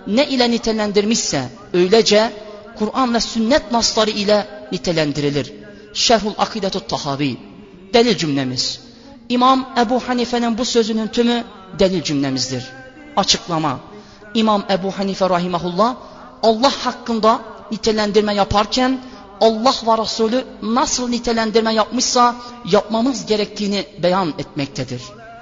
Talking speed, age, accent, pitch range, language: 100 wpm, 40-59, native, 195-250 Hz, Turkish